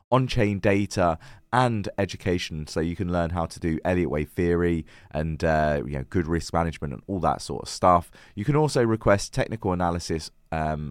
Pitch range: 85-110 Hz